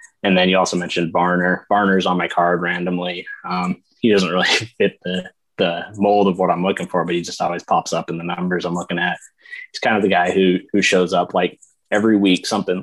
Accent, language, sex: American, English, male